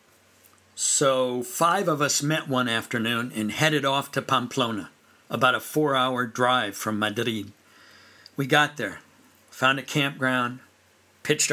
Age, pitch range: 50-69, 120-145 Hz